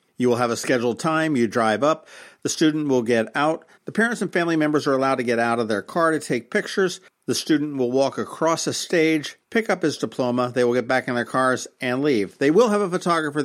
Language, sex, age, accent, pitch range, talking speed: English, male, 50-69, American, 125-155 Hz, 245 wpm